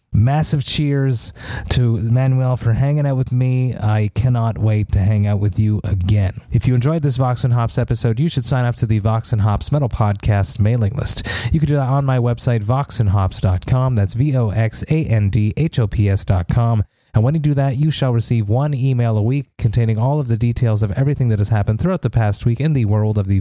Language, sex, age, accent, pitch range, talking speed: English, male, 30-49, American, 110-135 Hz, 210 wpm